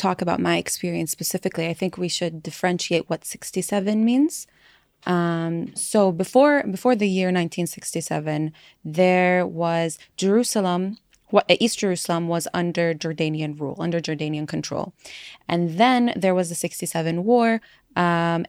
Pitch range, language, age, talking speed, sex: 165-185 Hz, English, 20-39, 135 wpm, female